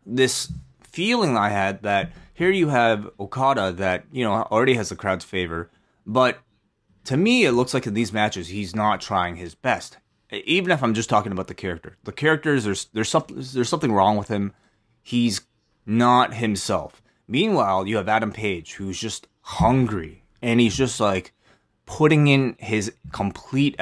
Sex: male